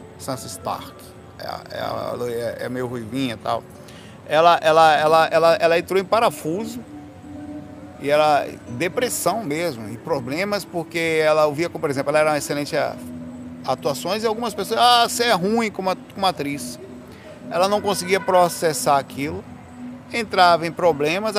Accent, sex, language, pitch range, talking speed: Brazilian, male, Portuguese, 140-175 Hz, 150 wpm